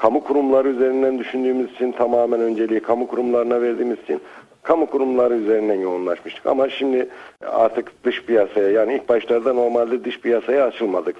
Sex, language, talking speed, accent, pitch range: male, Turkish, 145 wpm, native, 110-130 Hz